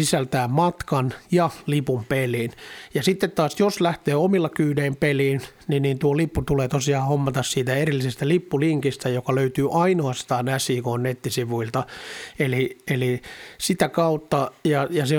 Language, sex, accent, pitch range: Finnish, male, native, 130-155 Hz